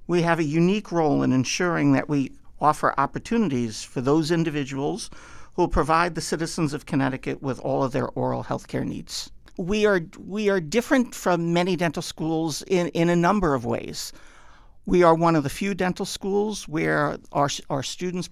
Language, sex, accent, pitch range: English, male, American, 145-185 Hz